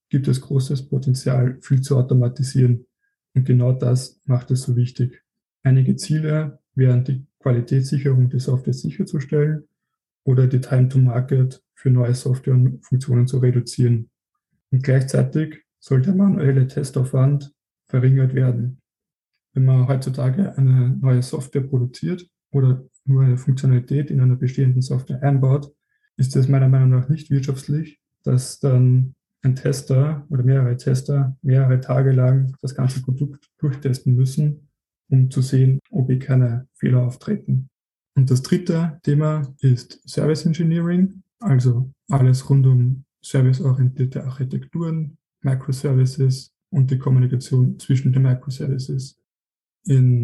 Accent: German